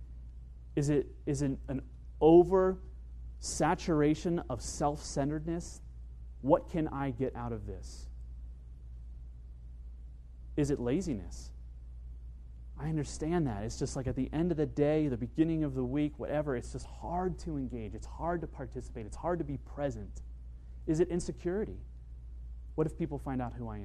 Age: 30-49